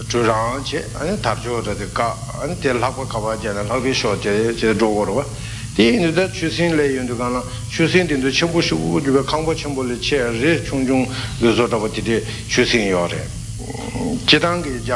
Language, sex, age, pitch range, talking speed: Italian, male, 60-79, 110-130 Hz, 115 wpm